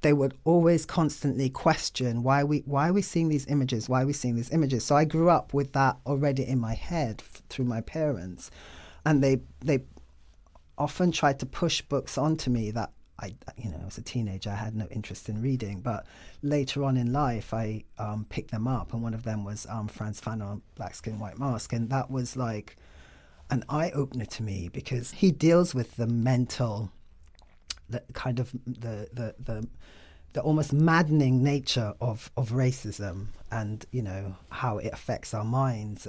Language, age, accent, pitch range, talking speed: English, 40-59, British, 105-140 Hz, 190 wpm